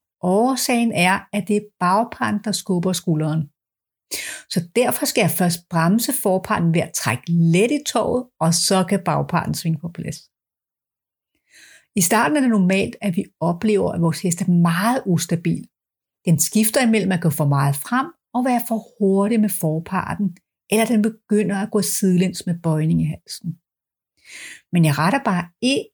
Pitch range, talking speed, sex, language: 170-220 Hz, 165 wpm, female, Danish